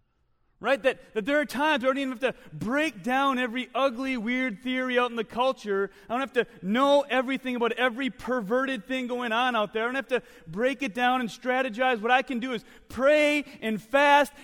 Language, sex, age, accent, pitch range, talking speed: English, male, 30-49, American, 180-260 Hz, 220 wpm